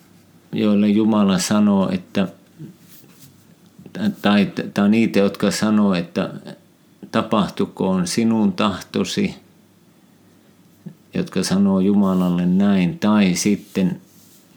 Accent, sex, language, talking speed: native, male, Finnish, 80 wpm